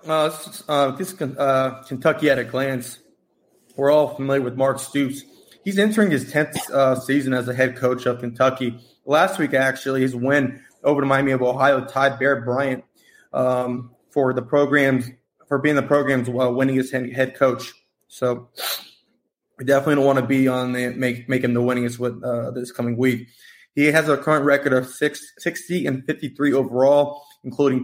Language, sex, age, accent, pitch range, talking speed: English, male, 20-39, American, 125-145 Hz, 180 wpm